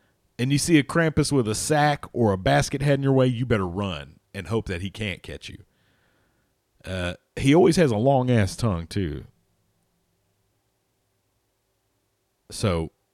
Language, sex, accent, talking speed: English, male, American, 155 wpm